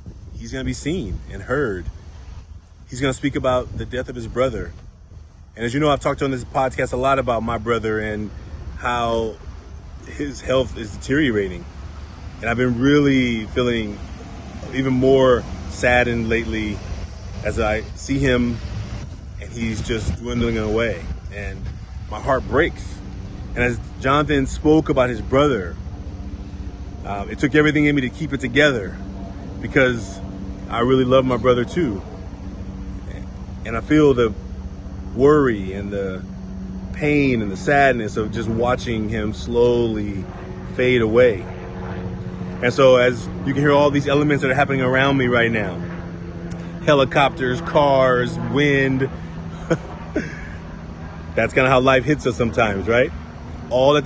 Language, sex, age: English, male, 30-49